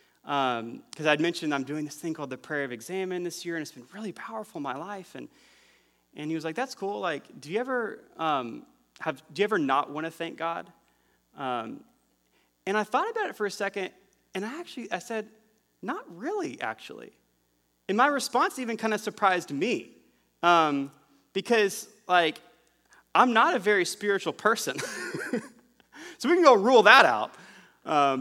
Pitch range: 150-220 Hz